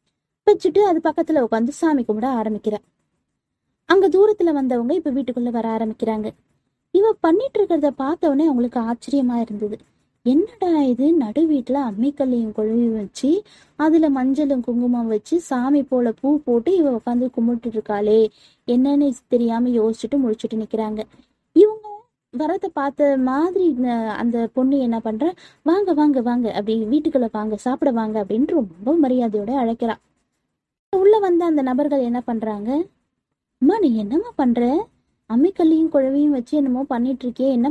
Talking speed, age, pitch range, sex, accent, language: 115 wpm, 20-39, 230-300 Hz, female, native, Tamil